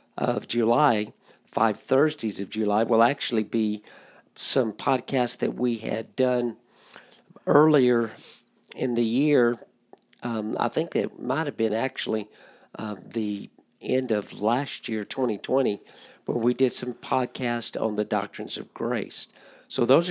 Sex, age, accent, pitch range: male, 50-69, American, 110-130 Hz